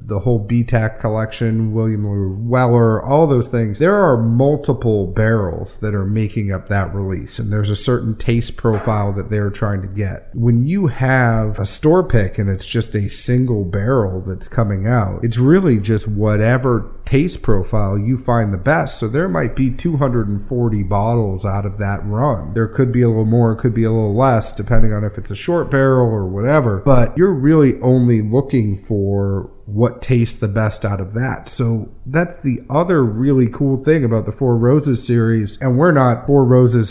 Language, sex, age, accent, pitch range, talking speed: English, male, 40-59, American, 105-130 Hz, 190 wpm